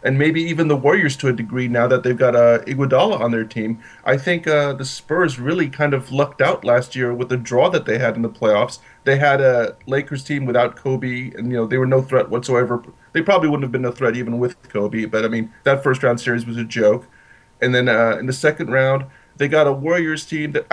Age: 30-49